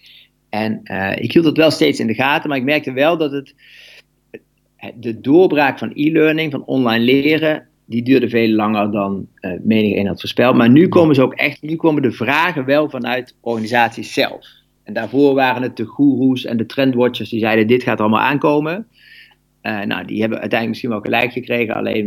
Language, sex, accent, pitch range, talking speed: Dutch, male, Dutch, 110-140 Hz, 195 wpm